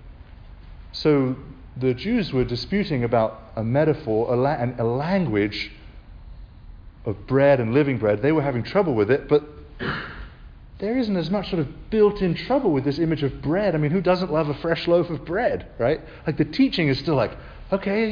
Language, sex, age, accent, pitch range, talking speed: English, male, 40-59, British, 110-165 Hz, 185 wpm